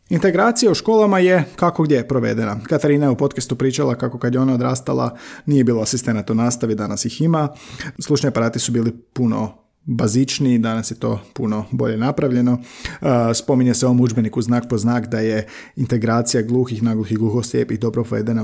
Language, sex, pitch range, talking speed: Croatian, male, 115-150 Hz, 170 wpm